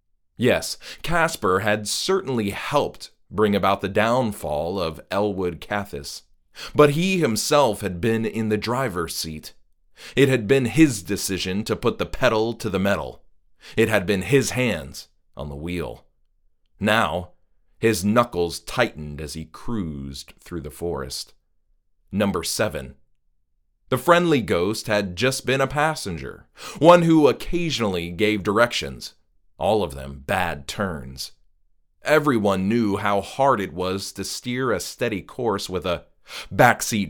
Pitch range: 85-120 Hz